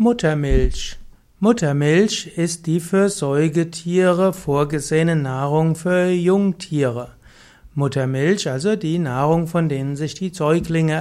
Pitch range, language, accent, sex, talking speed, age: 145-180 Hz, German, German, male, 105 wpm, 60-79